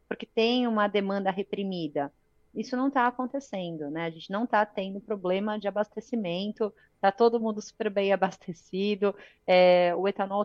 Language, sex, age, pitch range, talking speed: Portuguese, female, 30-49, 170-200 Hz, 155 wpm